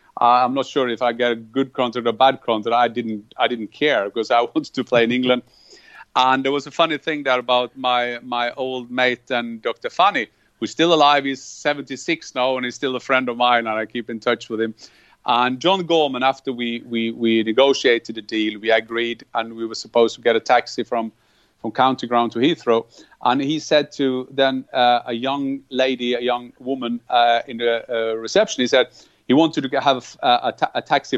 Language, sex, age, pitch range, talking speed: English, male, 40-59, 120-150 Hz, 220 wpm